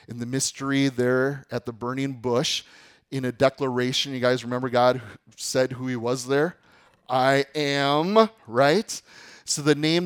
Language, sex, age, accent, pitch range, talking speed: English, male, 30-49, American, 120-155 Hz, 155 wpm